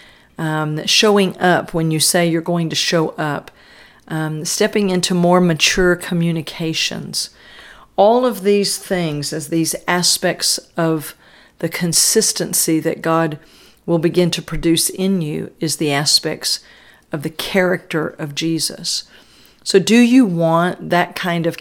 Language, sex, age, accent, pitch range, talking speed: English, female, 50-69, American, 155-180 Hz, 140 wpm